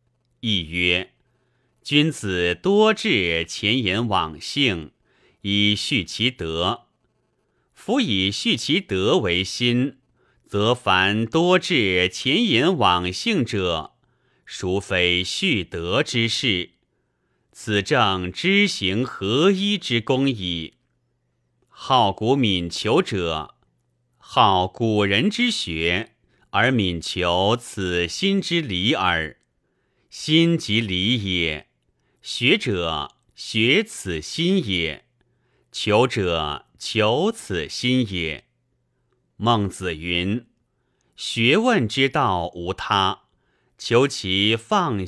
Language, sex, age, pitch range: Chinese, male, 30-49, 90-125 Hz